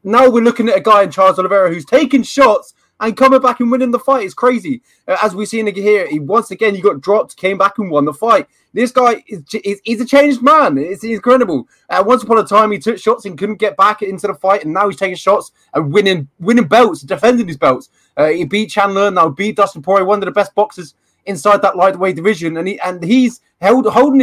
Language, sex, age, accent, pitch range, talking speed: English, male, 20-39, British, 165-220 Hz, 240 wpm